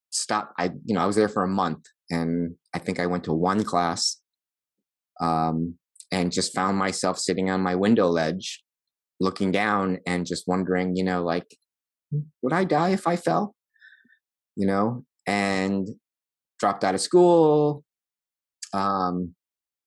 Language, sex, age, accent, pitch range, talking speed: English, male, 20-39, American, 90-100 Hz, 150 wpm